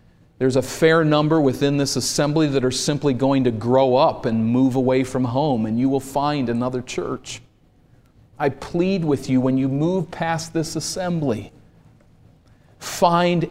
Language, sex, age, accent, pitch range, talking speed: English, male, 40-59, American, 130-170 Hz, 160 wpm